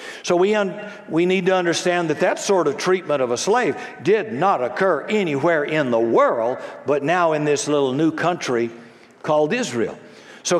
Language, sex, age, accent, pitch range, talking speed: English, male, 60-79, American, 150-190 Hz, 180 wpm